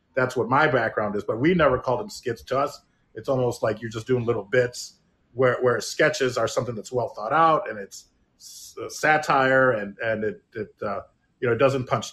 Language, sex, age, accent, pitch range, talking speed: English, male, 30-49, American, 130-170 Hz, 215 wpm